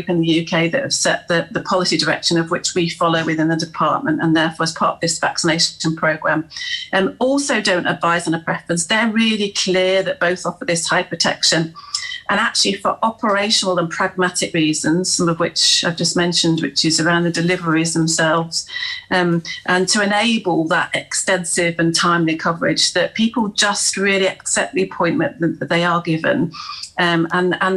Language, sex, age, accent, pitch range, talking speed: English, female, 40-59, British, 170-205 Hz, 180 wpm